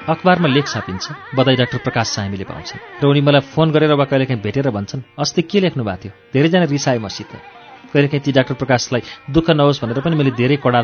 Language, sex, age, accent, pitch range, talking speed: English, male, 40-59, Indian, 120-150 Hz, 85 wpm